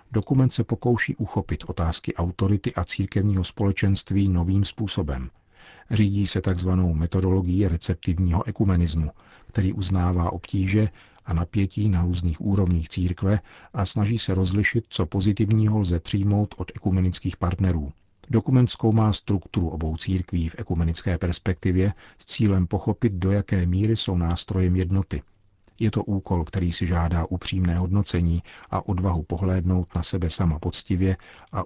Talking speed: 135 wpm